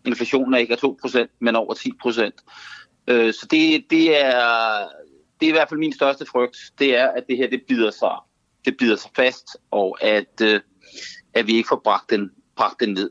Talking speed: 195 wpm